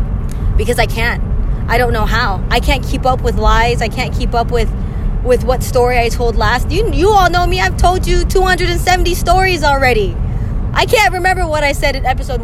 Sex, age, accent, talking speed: female, 20-39, American, 210 wpm